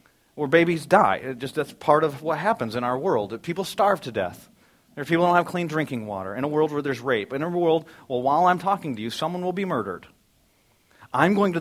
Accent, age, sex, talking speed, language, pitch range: American, 40-59, male, 235 wpm, English, 130-185 Hz